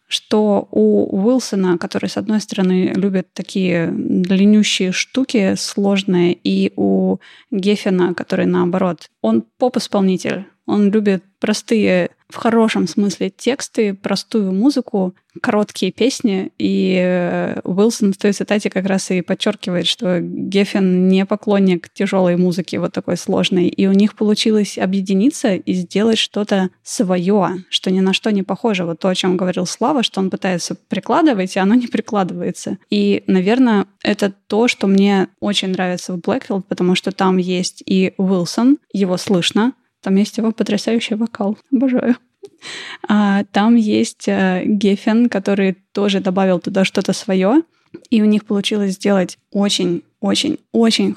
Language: Russian